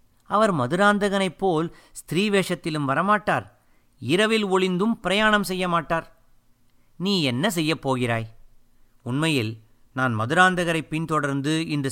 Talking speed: 85 wpm